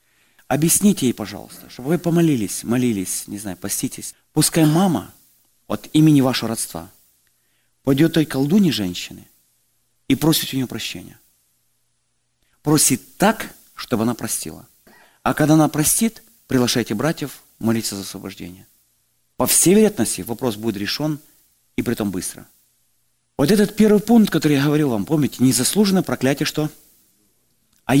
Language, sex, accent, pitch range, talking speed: Russian, male, native, 100-170 Hz, 135 wpm